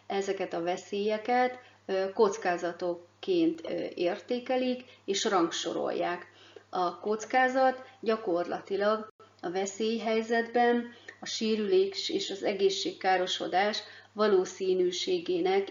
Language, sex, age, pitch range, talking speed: Hungarian, female, 30-49, 175-245 Hz, 70 wpm